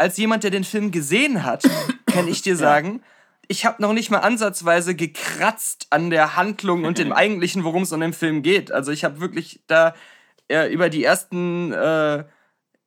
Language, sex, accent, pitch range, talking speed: German, male, German, 170-215 Hz, 190 wpm